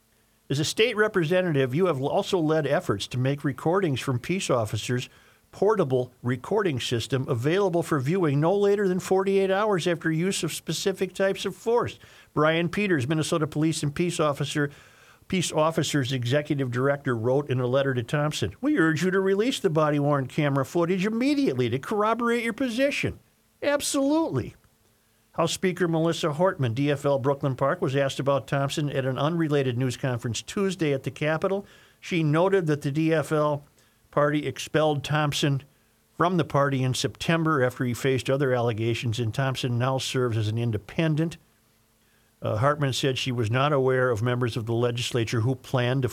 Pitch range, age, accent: 125-165 Hz, 50-69, American